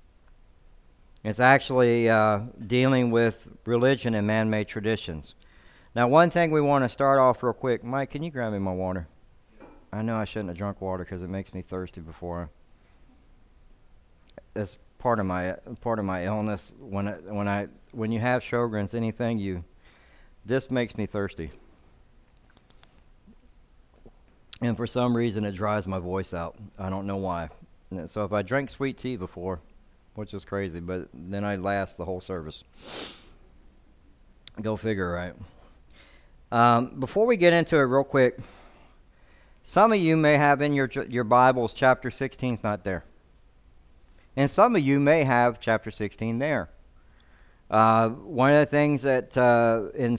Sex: male